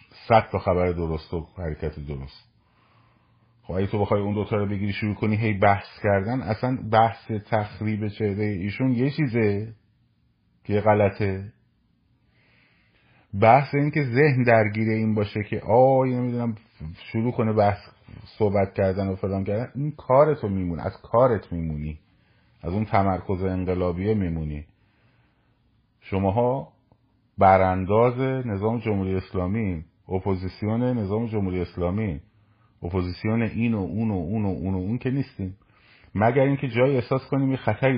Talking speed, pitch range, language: 135 wpm, 95-115 Hz, Persian